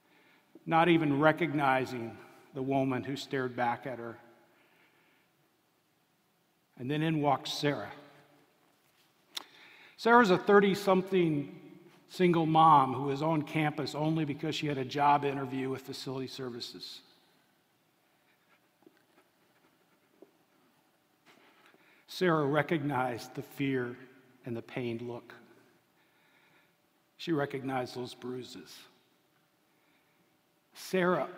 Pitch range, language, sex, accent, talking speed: 130-155 Hz, English, male, American, 90 wpm